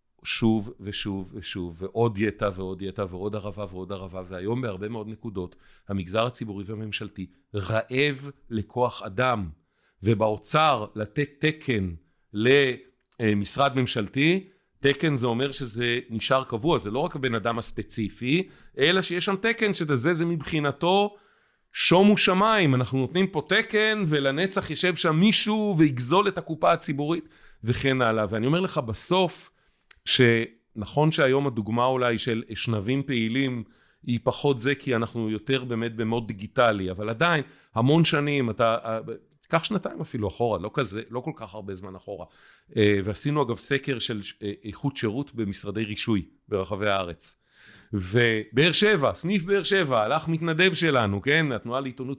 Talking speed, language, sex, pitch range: 135 wpm, Hebrew, male, 110-150 Hz